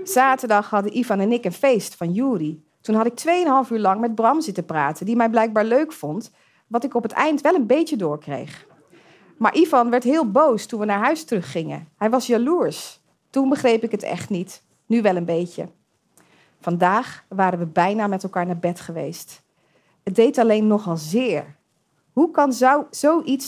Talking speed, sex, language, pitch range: 185 wpm, female, Dutch, 180-255 Hz